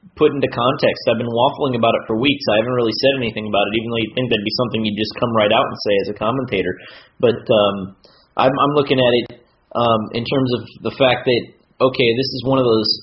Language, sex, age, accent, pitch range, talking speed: English, male, 30-49, American, 115-130 Hz, 250 wpm